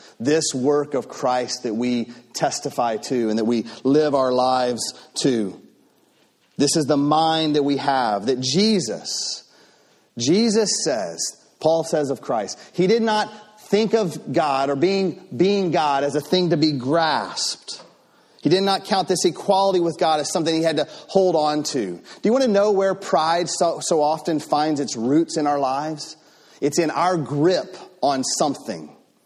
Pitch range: 145-185 Hz